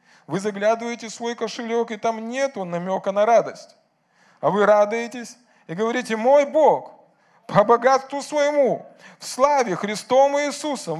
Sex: male